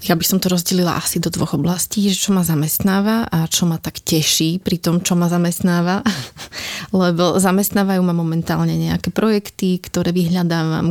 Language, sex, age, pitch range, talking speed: Slovak, female, 30-49, 165-185 Hz, 170 wpm